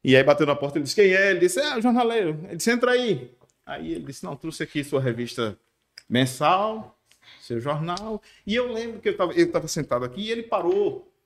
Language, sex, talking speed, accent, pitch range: Portuguese, male, 215 wpm, Brazilian, 145-215 Hz